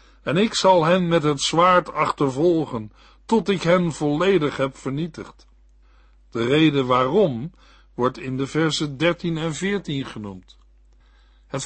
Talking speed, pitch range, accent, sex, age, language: 135 wpm, 130-175 Hz, Dutch, male, 60-79, Dutch